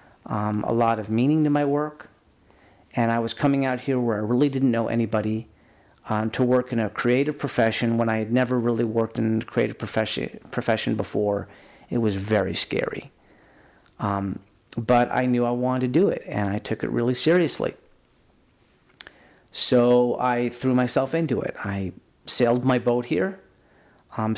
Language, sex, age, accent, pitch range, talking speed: English, male, 40-59, American, 110-125 Hz, 170 wpm